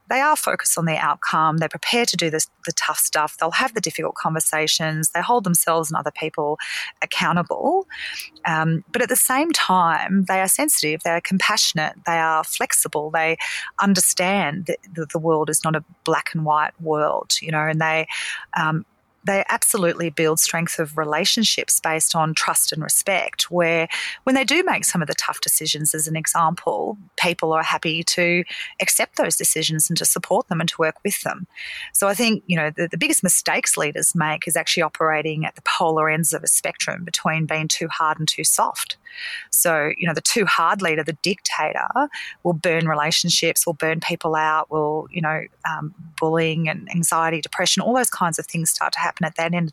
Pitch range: 160-185 Hz